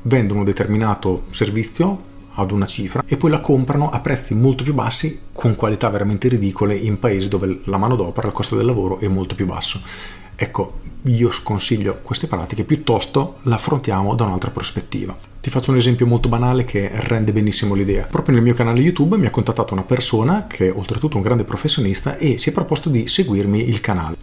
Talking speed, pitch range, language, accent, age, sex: 200 wpm, 100-130 Hz, Italian, native, 40-59, male